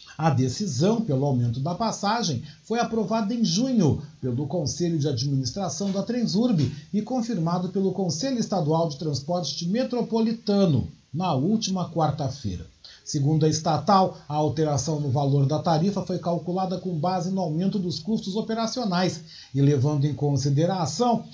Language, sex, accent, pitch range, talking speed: Portuguese, male, Brazilian, 145-215 Hz, 140 wpm